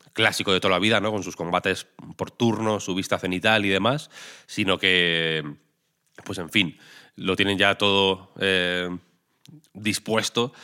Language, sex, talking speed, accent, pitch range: Spanish, male, 150 wpm, Spanish, 90-105 Hz